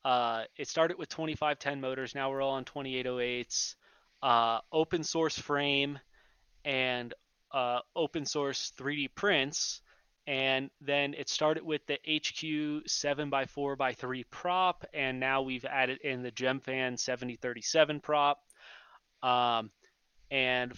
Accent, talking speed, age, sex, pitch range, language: American, 120 wpm, 20-39, male, 130-150 Hz, English